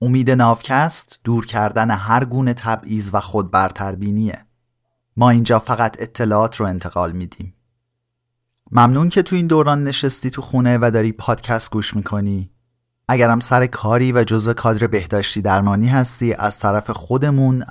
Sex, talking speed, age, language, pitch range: male, 140 wpm, 30-49, Persian, 100-125 Hz